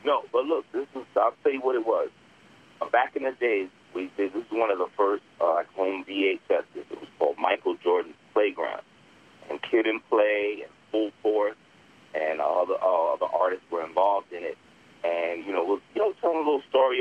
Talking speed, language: 210 wpm, English